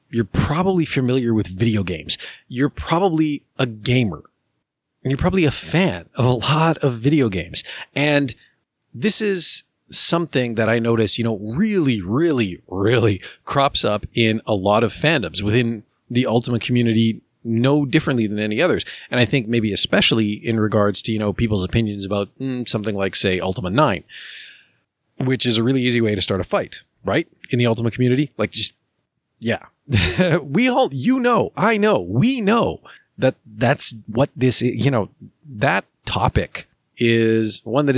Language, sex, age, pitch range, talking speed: English, male, 30-49, 110-140 Hz, 165 wpm